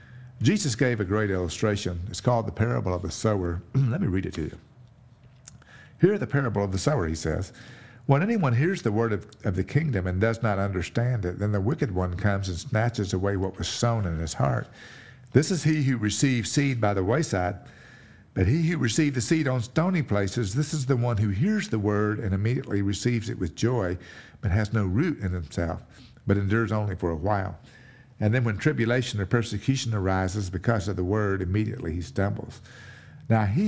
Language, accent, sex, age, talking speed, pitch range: English, American, male, 50-69, 205 wpm, 100-130 Hz